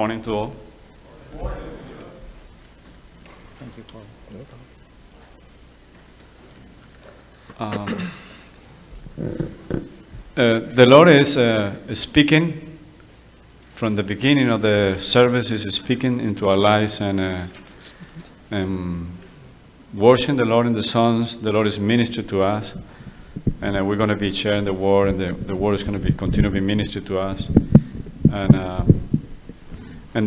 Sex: male